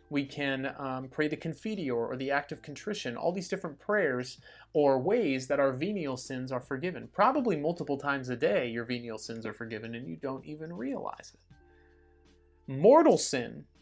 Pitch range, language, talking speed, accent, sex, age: 125-170 Hz, English, 180 wpm, American, male, 30-49